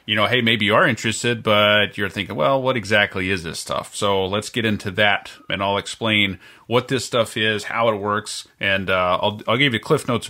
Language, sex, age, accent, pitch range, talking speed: English, male, 30-49, American, 95-115 Hz, 235 wpm